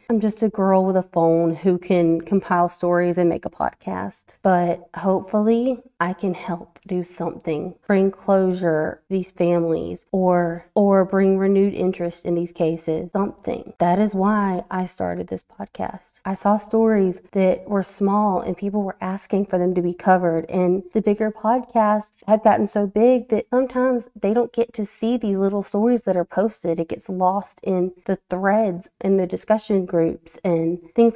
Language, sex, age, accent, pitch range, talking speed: English, female, 20-39, American, 175-205 Hz, 175 wpm